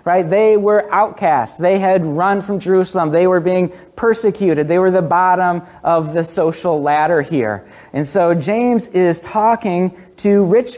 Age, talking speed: 40-59, 160 wpm